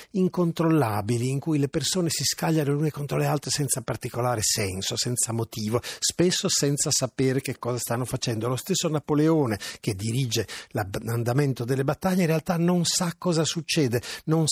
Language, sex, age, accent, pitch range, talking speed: Italian, male, 50-69, native, 110-145 Hz, 160 wpm